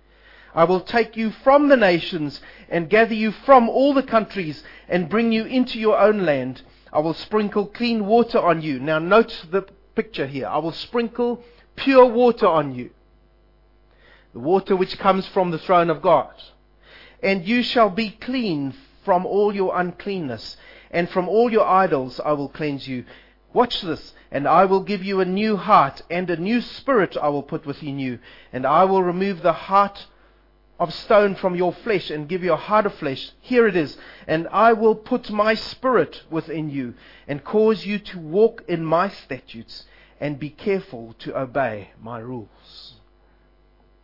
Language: English